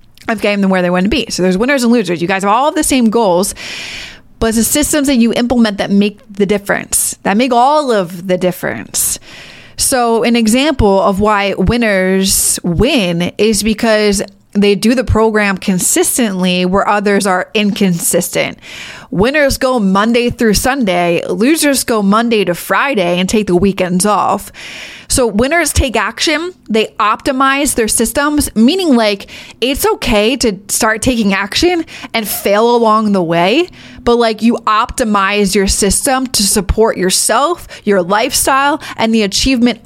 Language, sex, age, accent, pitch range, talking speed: English, female, 20-39, American, 200-250 Hz, 155 wpm